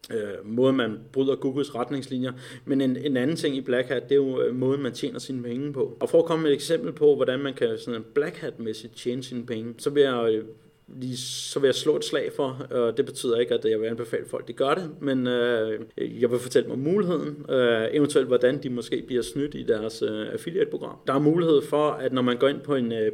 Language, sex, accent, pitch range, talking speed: Danish, male, native, 120-155 Hz, 245 wpm